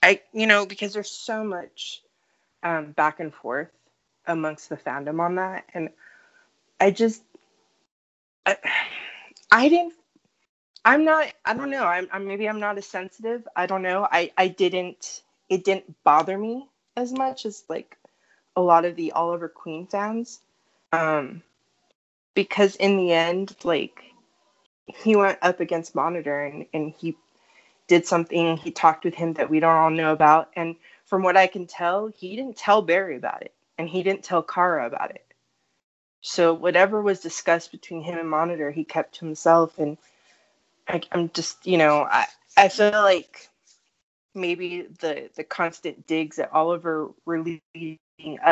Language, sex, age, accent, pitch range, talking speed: English, female, 20-39, American, 160-200 Hz, 160 wpm